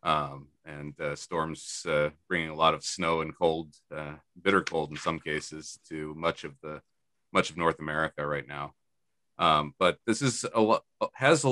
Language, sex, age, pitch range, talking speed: English, male, 40-59, 75-90 Hz, 190 wpm